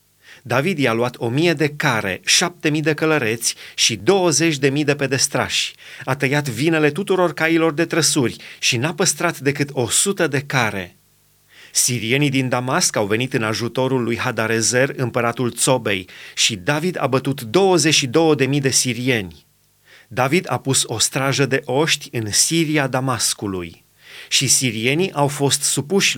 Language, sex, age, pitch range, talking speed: Romanian, male, 30-49, 120-155 Hz, 155 wpm